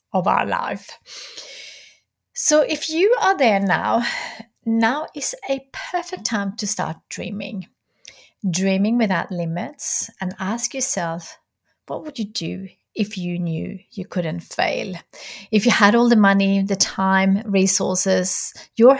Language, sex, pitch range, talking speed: English, female, 180-230 Hz, 125 wpm